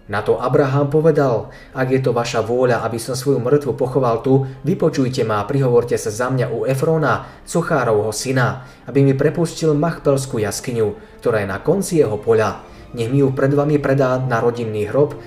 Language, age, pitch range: Slovak, 20-39, 120-150 Hz